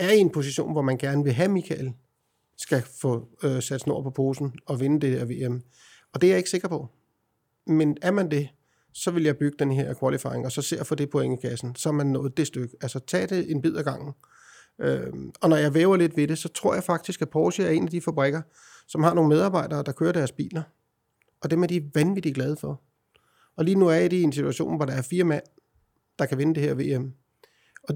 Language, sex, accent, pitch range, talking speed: Danish, male, native, 135-165 Hz, 250 wpm